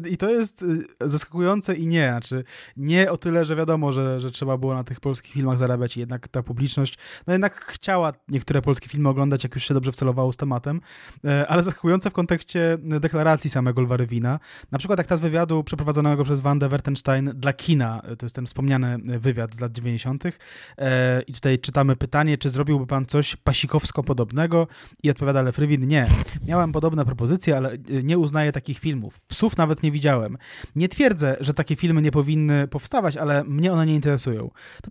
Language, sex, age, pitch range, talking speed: Polish, male, 20-39, 130-160 Hz, 185 wpm